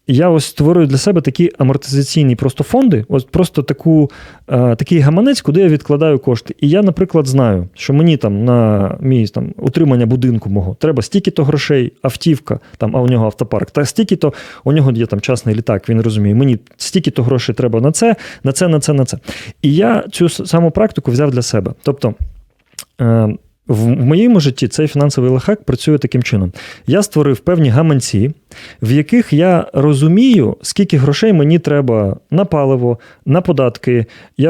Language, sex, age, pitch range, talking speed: Ukrainian, male, 30-49, 125-160 Hz, 165 wpm